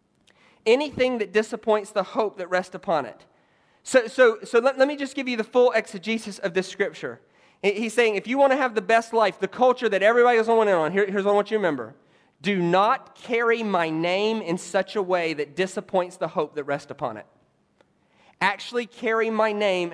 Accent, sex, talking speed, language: American, male, 215 wpm, English